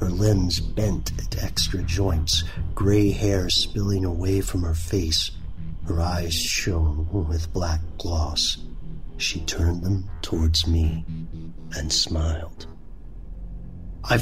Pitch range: 85-100 Hz